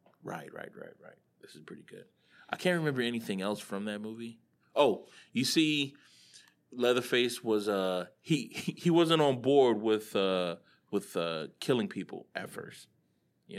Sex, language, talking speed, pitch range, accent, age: male, English, 160 wpm, 95-135 Hz, American, 20-39